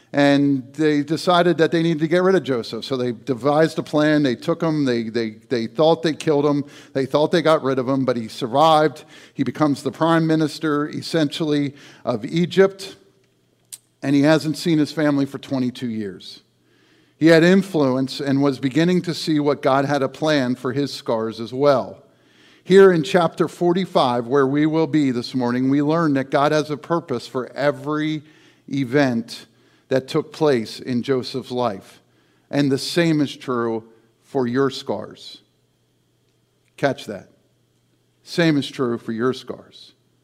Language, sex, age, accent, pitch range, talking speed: English, male, 50-69, American, 130-165 Hz, 170 wpm